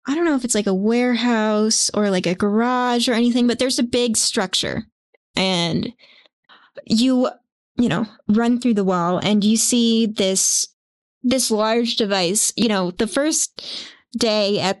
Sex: female